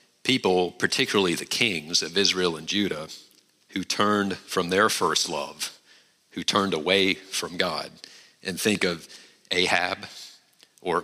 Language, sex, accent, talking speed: English, male, American, 130 wpm